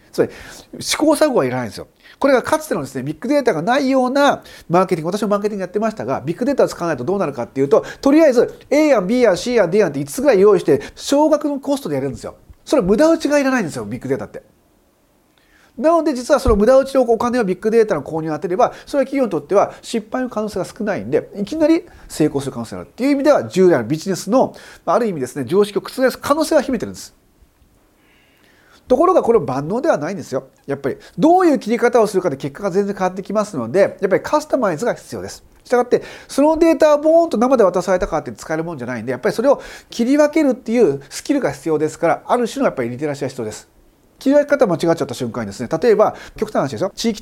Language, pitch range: Japanese, 170-280 Hz